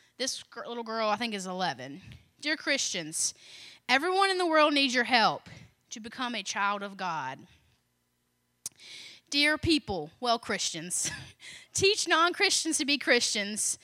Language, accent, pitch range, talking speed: English, American, 195-295 Hz, 135 wpm